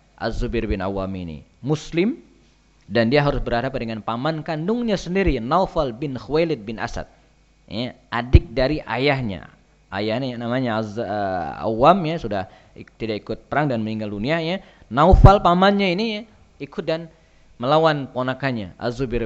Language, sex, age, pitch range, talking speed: Indonesian, male, 20-39, 125-170 Hz, 145 wpm